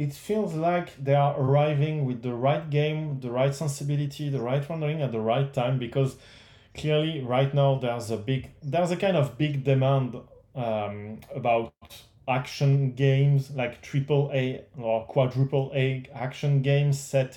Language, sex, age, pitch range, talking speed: English, male, 20-39, 125-145 Hz, 160 wpm